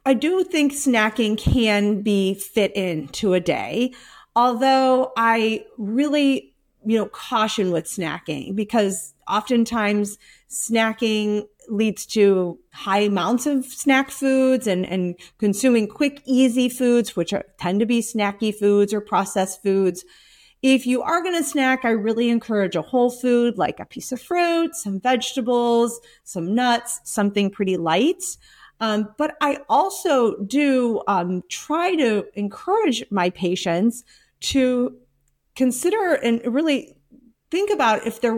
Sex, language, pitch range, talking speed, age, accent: female, English, 200-260 Hz, 135 wpm, 40-59, American